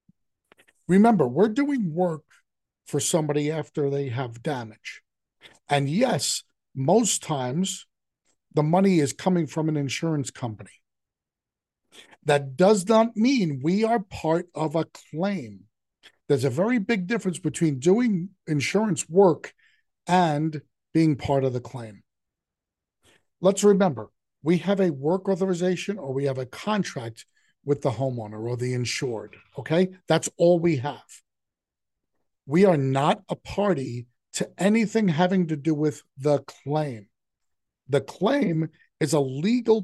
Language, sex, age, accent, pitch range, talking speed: English, male, 50-69, American, 140-185 Hz, 135 wpm